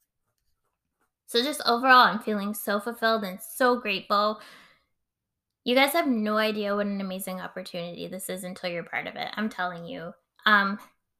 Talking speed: 160 wpm